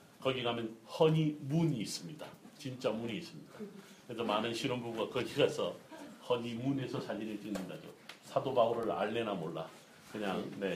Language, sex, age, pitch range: Korean, male, 40-59, 120-150 Hz